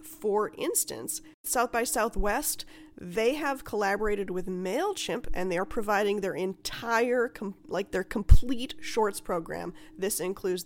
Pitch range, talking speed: 185-260 Hz, 130 wpm